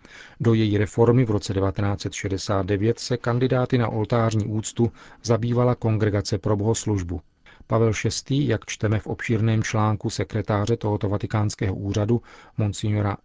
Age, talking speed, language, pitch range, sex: 40-59, 120 wpm, Czech, 105-115 Hz, male